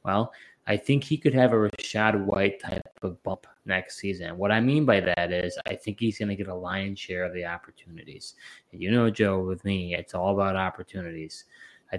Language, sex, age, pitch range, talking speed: English, male, 20-39, 95-105 Hz, 215 wpm